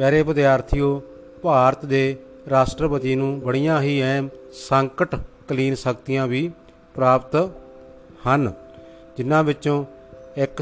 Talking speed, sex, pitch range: 100 wpm, male, 125-140 Hz